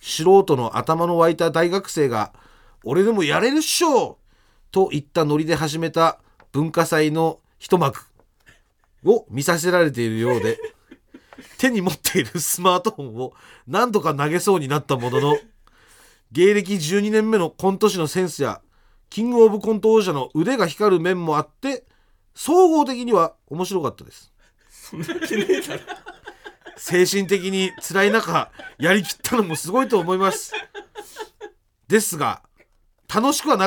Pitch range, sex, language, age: 160-245 Hz, male, Japanese, 40-59